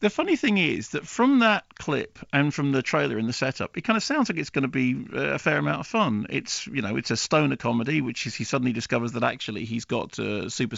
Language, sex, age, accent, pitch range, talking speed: English, male, 40-59, British, 120-155 Hz, 260 wpm